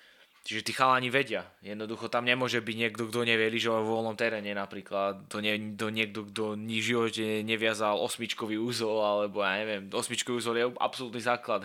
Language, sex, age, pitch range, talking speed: Slovak, male, 20-39, 105-120 Hz, 175 wpm